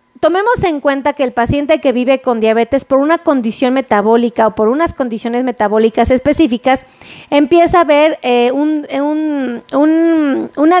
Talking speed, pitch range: 160 wpm, 245-315 Hz